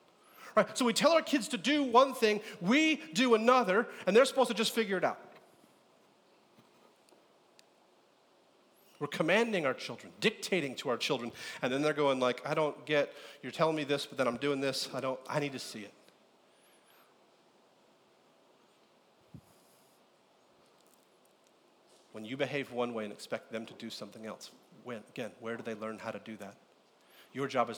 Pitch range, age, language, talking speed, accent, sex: 120-160 Hz, 40-59, English, 165 wpm, American, male